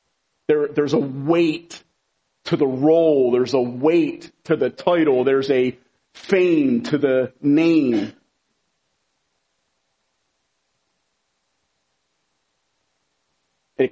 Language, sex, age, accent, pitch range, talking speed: English, male, 40-59, American, 120-170 Hz, 80 wpm